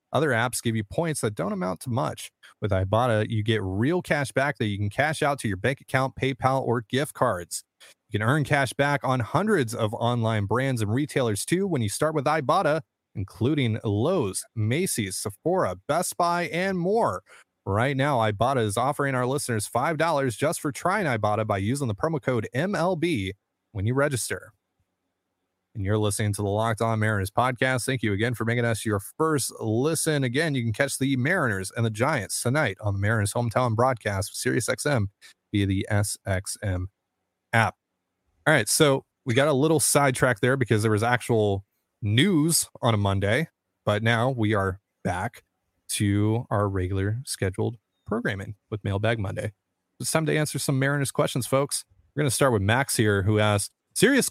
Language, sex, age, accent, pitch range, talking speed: English, male, 30-49, American, 105-140 Hz, 180 wpm